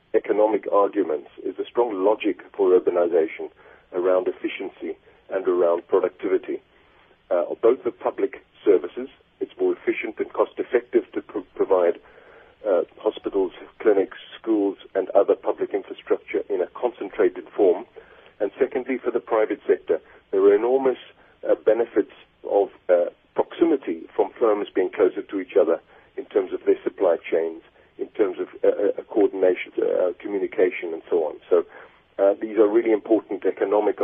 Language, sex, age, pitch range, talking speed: English, male, 50-69, 370-450 Hz, 150 wpm